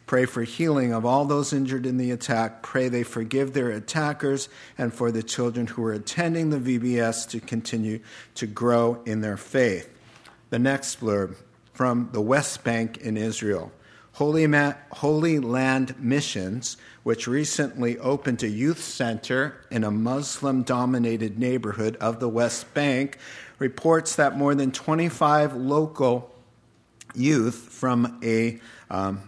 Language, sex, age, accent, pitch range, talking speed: English, male, 50-69, American, 115-140 Hz, 140 wpm